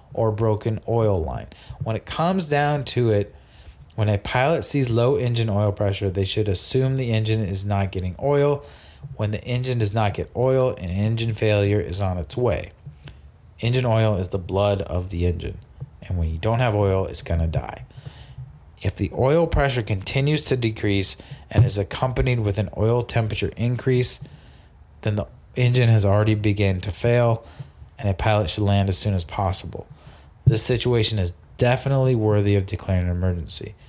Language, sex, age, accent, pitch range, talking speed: English, male, 30-49, American, 95-120 Hz, 175 wpm